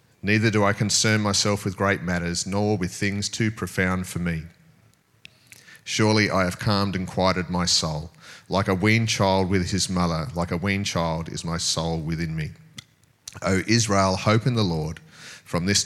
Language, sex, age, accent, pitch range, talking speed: English, male, 30-49, Australian, 85-115 Hz, 180 wpm